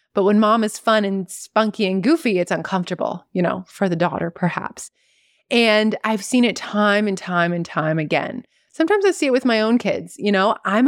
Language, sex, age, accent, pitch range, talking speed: English, female, 30-49, American, 190-245 Hz, 210 wpm